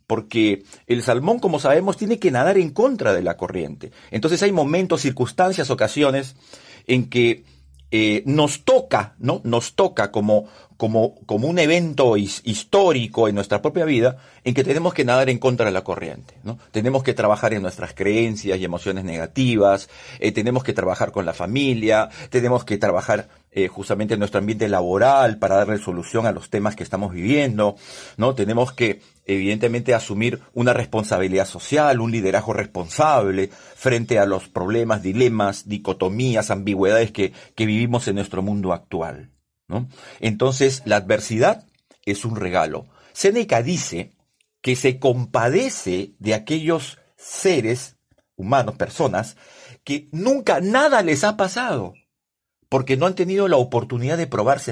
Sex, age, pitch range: male, 50-69, 100-135 Hz